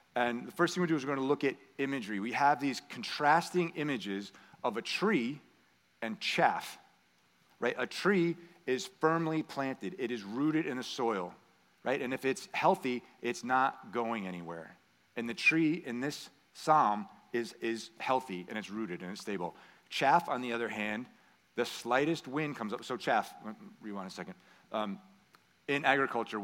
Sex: male